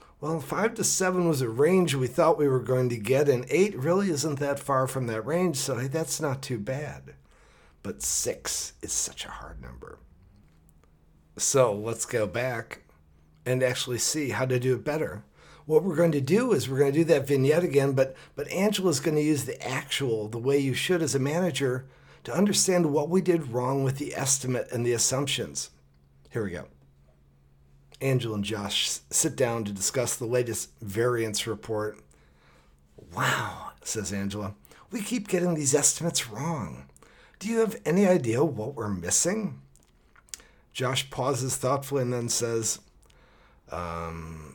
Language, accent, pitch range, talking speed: English, American, 90-145 Hz, 165 wpm